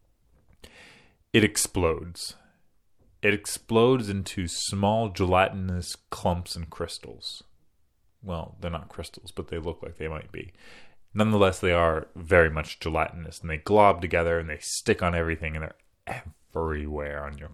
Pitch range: 80-95 Hz